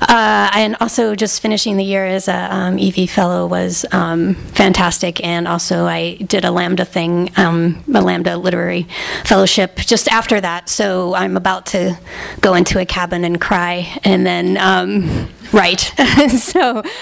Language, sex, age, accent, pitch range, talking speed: English, female, 30-49, American, 175-205 Hz, 155 wpm